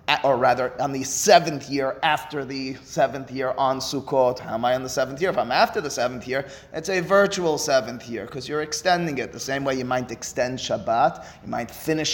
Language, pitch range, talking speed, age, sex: English, 130-180 Hz, 220 wpm, 30-49, male